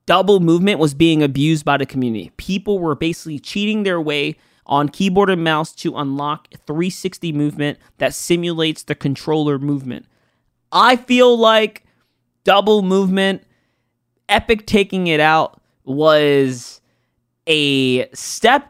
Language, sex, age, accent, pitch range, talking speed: English, male, 20-39, American, 150-210 Hz, 125 wpm